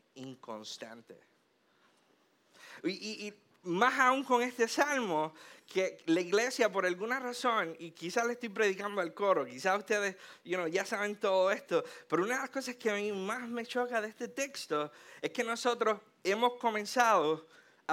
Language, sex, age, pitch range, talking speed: Spanish, male, 50-69, 170-230 Hz, 165 wpm